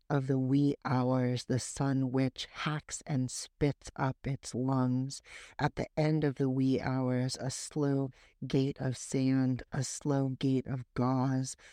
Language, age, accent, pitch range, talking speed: English, 60-79, American, 130-140 Hz, 155 wpm